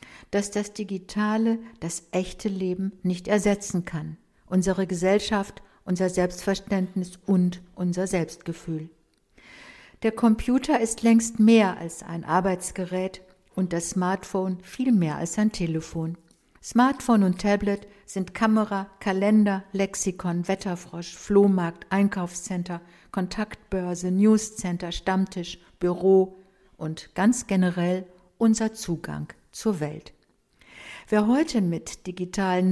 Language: German